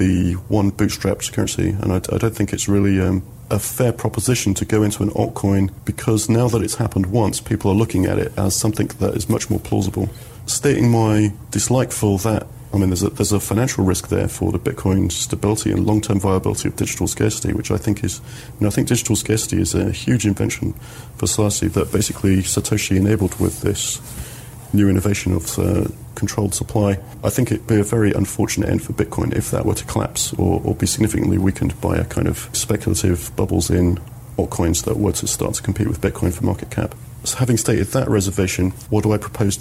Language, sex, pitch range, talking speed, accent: English, male, 100-115 Hz, 205 wpm, British